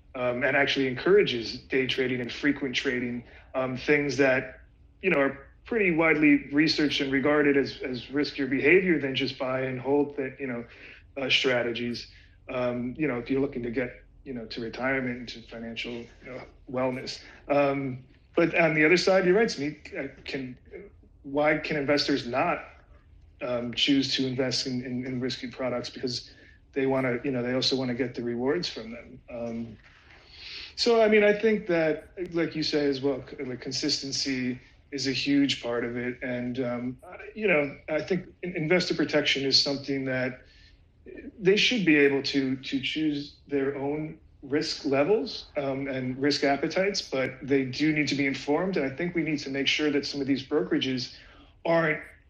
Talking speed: 180 wpm